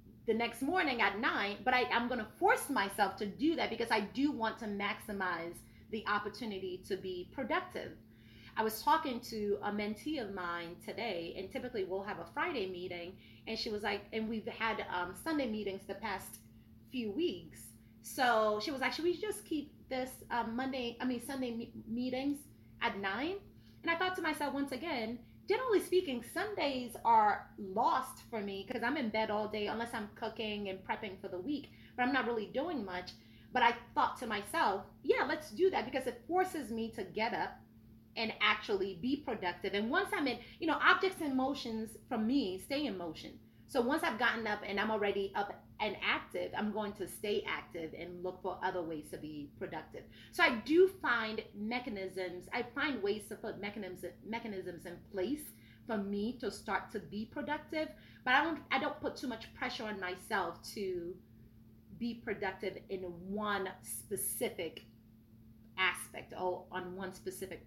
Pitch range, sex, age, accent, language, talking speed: 190-260 Hz, female, 30-49, American, English, 185 wpm